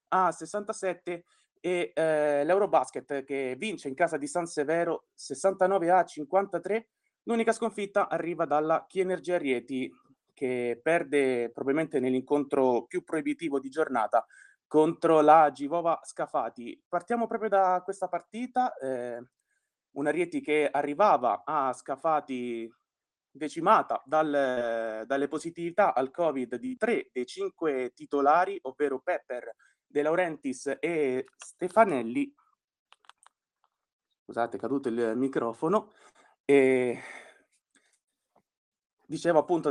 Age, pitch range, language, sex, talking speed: 20-39, 135-180 Hz, Italian, male, 105 wpm